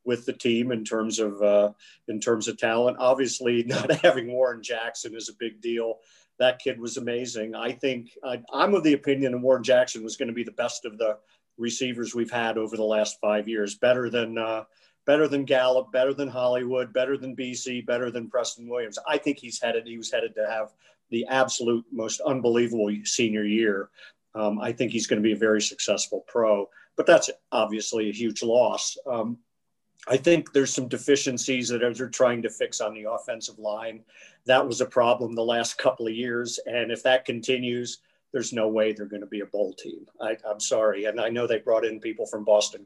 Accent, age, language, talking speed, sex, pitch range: American, 50-69, English, 205 wpm, male, 110-125 Hz